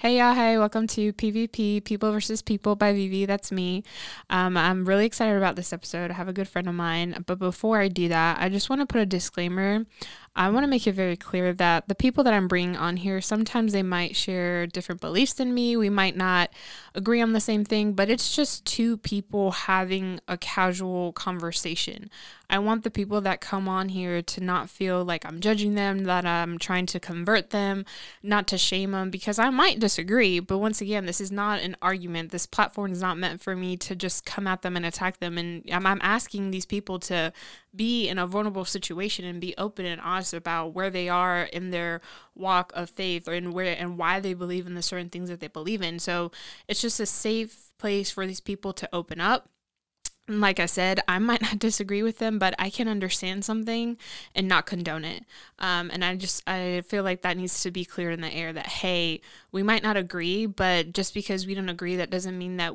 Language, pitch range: English, 180-210 Hz